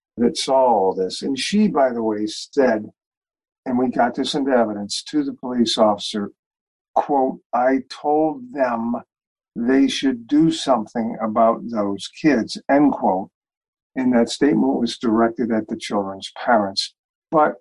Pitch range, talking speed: 110-140 Hz, 145 wpm